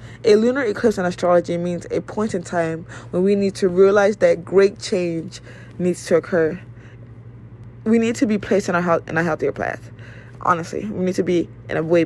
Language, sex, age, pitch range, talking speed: English, female, 20-39, 120-200 Hz, 190 wpm